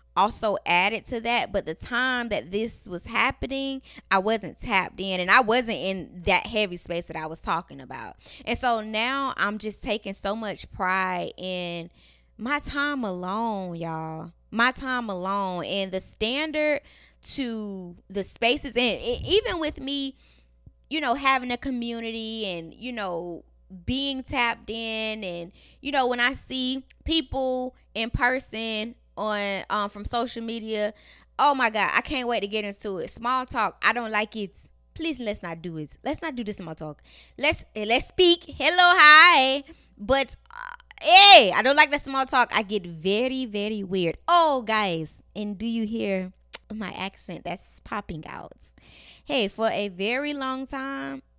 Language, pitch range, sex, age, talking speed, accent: English, 195-260 Hz, female, 20-39, 165 wpm, American